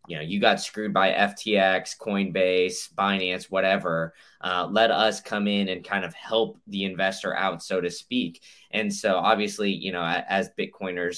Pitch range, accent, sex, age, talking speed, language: 95-110 Hz, American, male, 10-29, 170 wpm, English